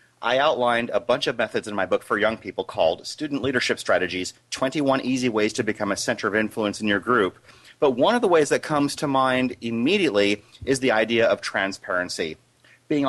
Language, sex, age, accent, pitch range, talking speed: English, male, 30-49, American, 110-155 Hz, 205 wpm